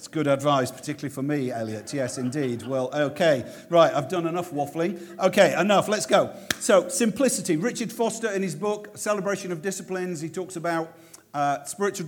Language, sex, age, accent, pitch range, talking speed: English, male, 50-69, British, 130-175 Hz, 170 wpm